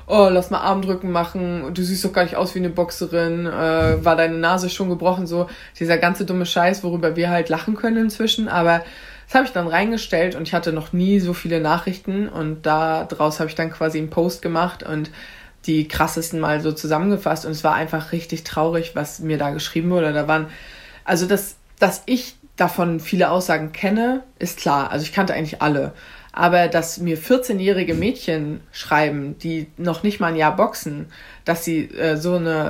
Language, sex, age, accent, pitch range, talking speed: German, female, 20-39, German, 160-185 Hz, 195 wpm